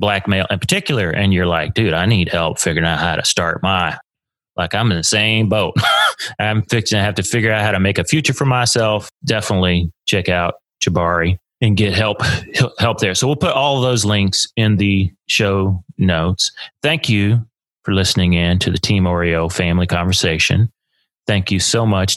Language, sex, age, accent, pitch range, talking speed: English, male, 30-49, American, 90-115 Hz, 190 wpm